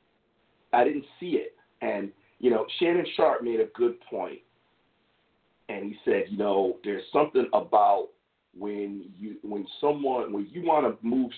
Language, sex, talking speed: English, male, 155 wpm